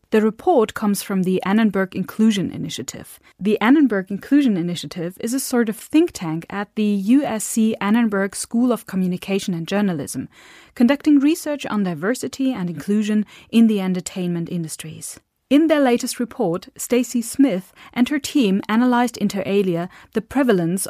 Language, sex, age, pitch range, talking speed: German, female, 30-49, 185-255 Hz, 145 wpm